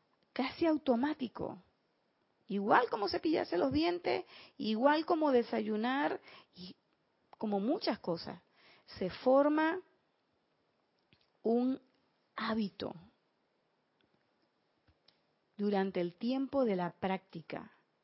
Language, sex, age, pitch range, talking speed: Spanish, female, 40-59, 200-285 Hz, 80 wpm